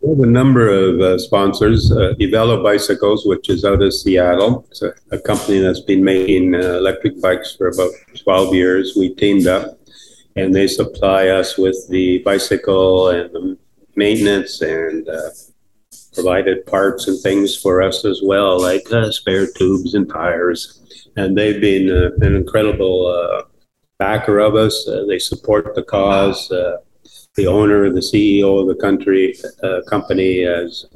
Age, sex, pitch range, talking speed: 50-69, male, 90-100 Hz, 165 wpm